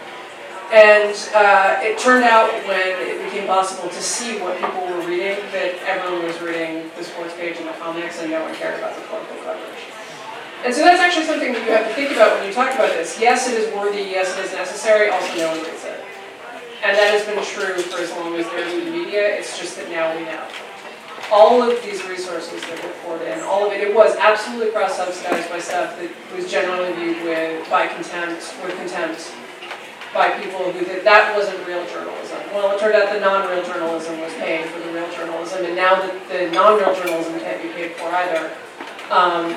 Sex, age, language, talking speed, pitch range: female, 30-49, English, 215 wpm, 175-210 Hz